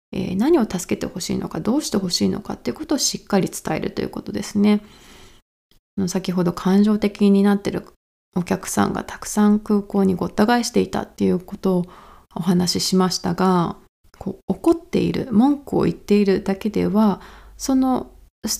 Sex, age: female, 20-39